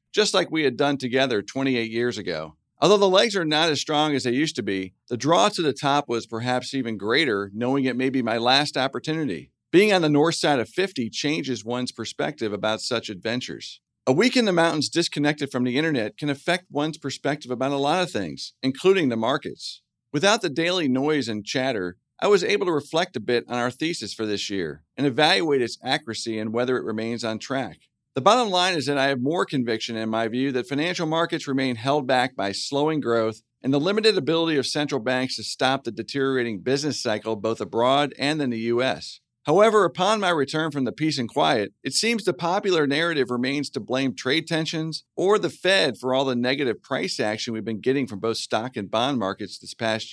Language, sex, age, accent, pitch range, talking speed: English, male, 50-69, American, 115-155 Hz, 215 wpm